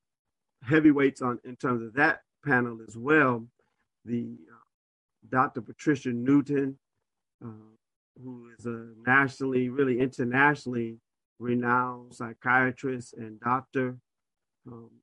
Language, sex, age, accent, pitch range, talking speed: English, male, 50-69, American, 115-130 Hz, 105 wpm